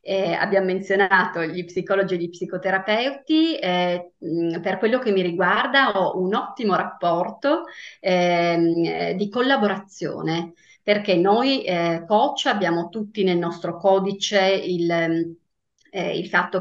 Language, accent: English, Italian